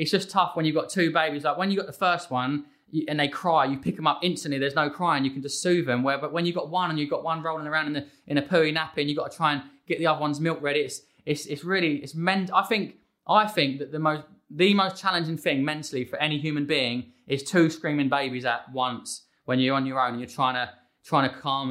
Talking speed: 275 wpm